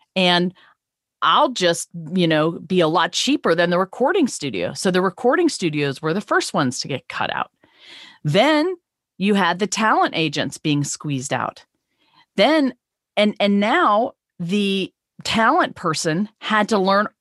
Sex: female